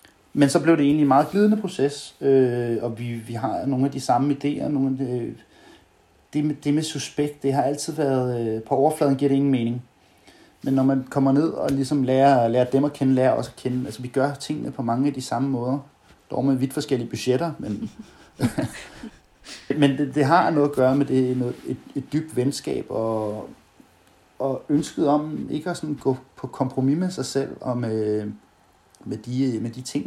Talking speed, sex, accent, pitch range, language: 210 wpm, male, native, 115-140 Hz, Danish